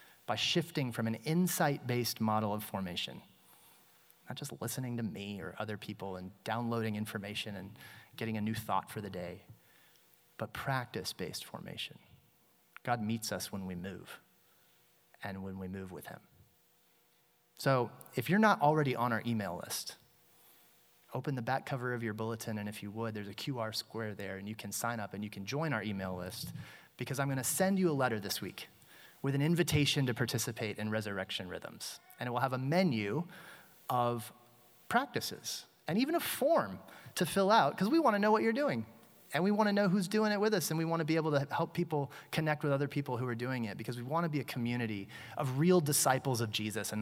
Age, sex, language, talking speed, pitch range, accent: 30-49, male, English, 205 wpm, 105-145 Hz, American